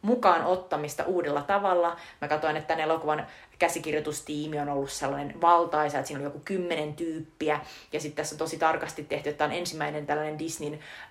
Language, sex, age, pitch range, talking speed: Finnish, female, 30-49, 150-170 Hz, 180 wpm